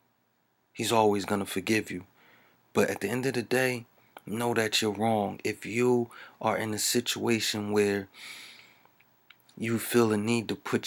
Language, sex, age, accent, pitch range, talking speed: English, male, 30-49, American, 95-115 Hz, 165 wpm